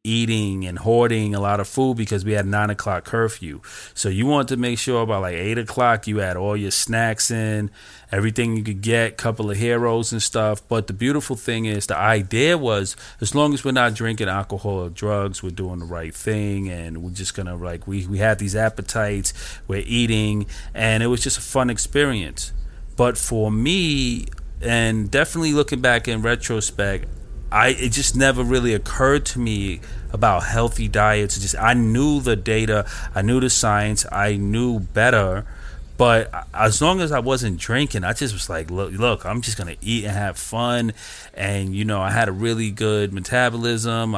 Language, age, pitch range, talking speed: English, 30-49, 100-120 Hz, 195 wpm